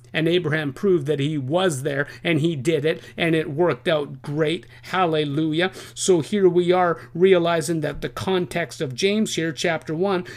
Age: 50-69